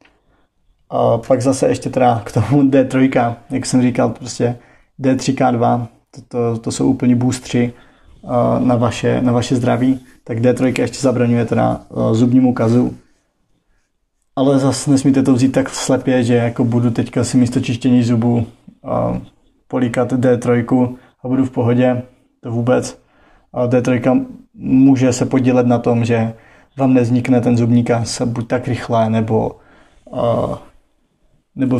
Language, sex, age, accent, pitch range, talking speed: Czech, male, 20-39, native, 120-130 Hz, 135 wpm